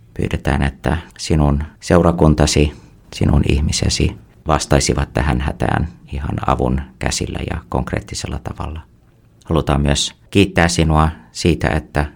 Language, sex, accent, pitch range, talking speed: Finnish, male, native, 70-90 Hz, 105 wpm